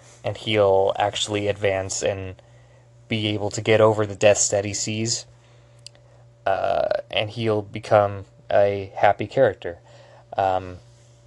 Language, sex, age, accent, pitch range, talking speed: English, male, 20-39, American, 105-120 Hz, 120 wpm